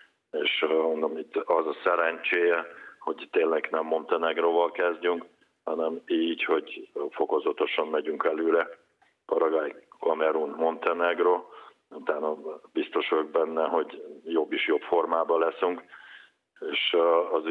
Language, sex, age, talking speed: Hungarian, male, 50-69, 115 wpm